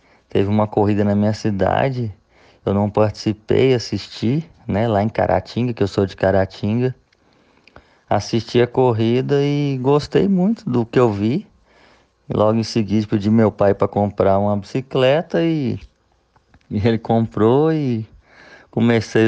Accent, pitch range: Brazilian, 100-120 Hz